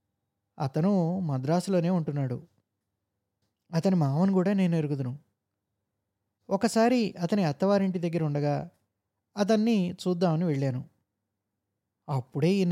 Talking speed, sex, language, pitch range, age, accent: 80 wpm, male, Telugu, 115-185 Hz, 20-39, native